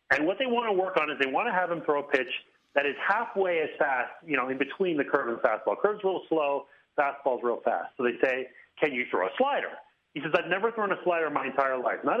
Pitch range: 135-230 Hz